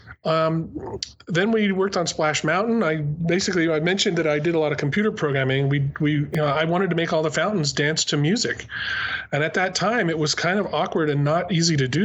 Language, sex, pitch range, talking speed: English, male, 130-160 Hz, 235 wpm